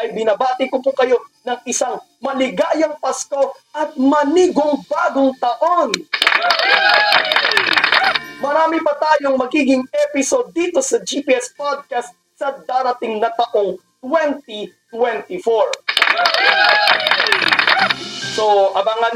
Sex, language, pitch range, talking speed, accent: male, Filipino, 195-275 Hz, 90 wpm, native